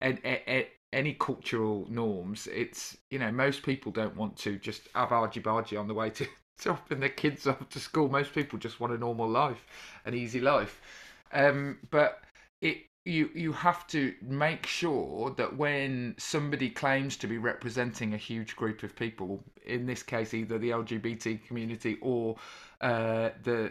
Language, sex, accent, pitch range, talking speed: English, male, British, 115-145 Hz, 170 wpm